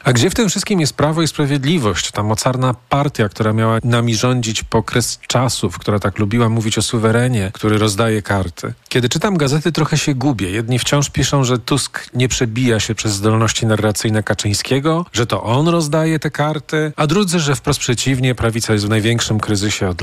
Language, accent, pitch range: Polish, native, 105-145 Hz